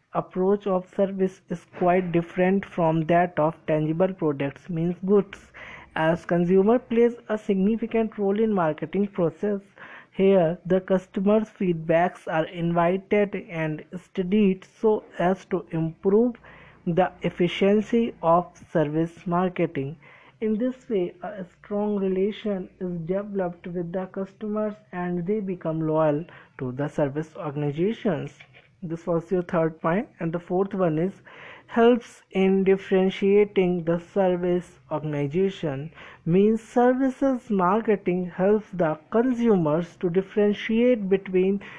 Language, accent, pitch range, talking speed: Hindi, native, 170-210 Hz, 120 wpm